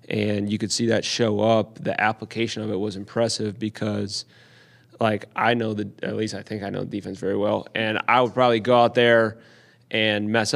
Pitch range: 105-115 Hz